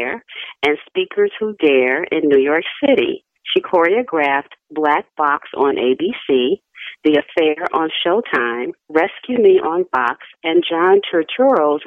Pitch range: 145-205 Hz